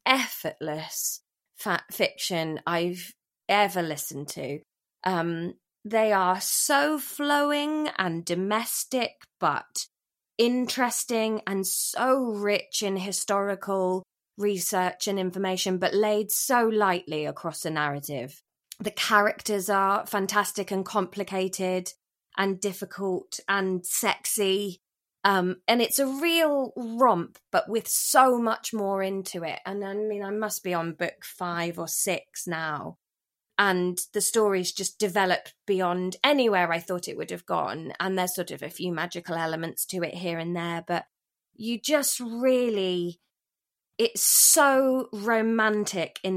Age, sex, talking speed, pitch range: 20-39, female, 130 wpm, 175-220 Hz